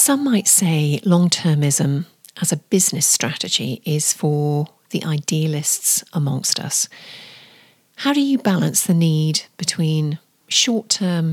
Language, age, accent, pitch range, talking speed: English, 40-59, British, 155-205 Hz, 115 wpm